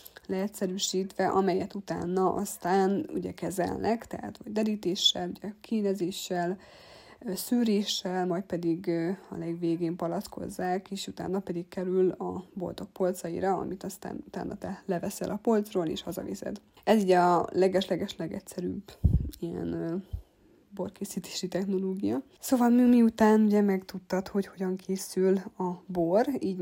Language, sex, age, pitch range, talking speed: Hungarian, female, 20-39, 180-200 Hz, 115 wpm